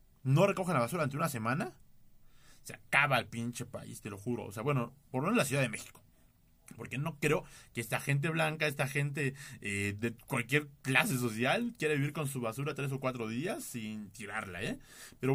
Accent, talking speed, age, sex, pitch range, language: Mexican, 205 wpm, 30-49, male, 125-185 Hz, Spanish